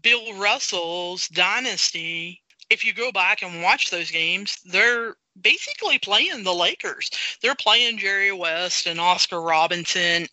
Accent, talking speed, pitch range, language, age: American, 135 wpm, 180-220 Hz, English, 40-59